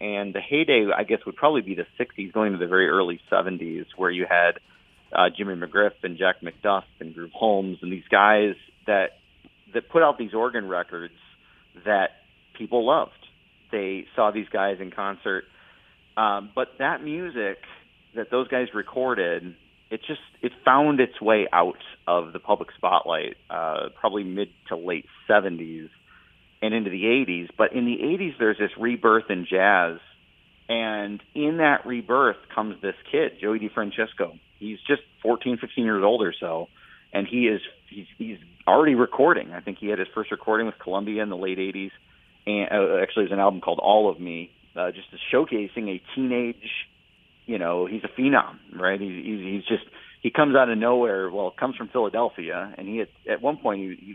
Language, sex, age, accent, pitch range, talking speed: English, male, 40-59, American, 95-115 Hz, 180 wpm